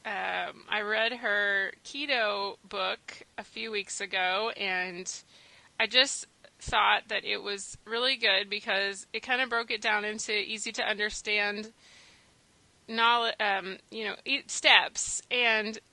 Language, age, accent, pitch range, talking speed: English, 30-49, American, 205-235 Hz, 135 wpm